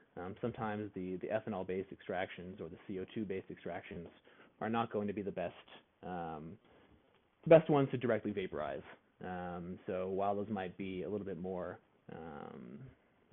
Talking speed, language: 170 wpm, English